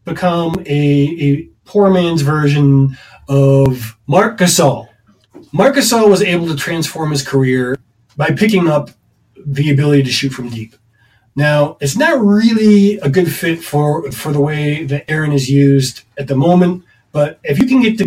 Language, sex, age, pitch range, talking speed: English, male, 30-49, 140-190 Hz, 165 wpm